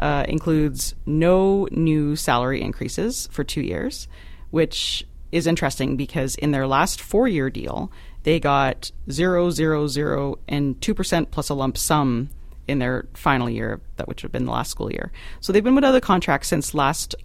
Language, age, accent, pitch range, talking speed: English, 30-49, American, 130-160 Hz, 180 wpm